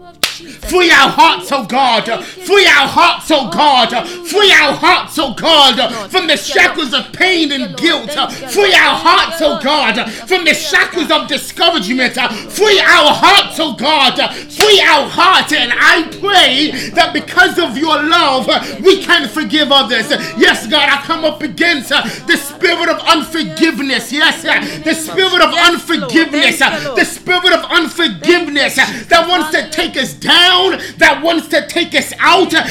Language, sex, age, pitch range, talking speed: English, male, 30-49, 290-345 Hz, 155 wpm